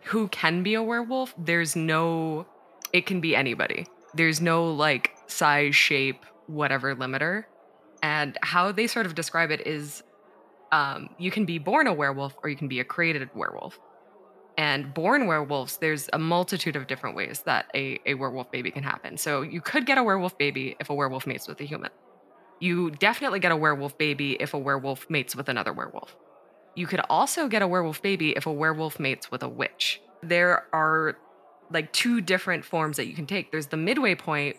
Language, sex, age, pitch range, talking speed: English, female, 20-39, 145-180 Hz, 195 wpm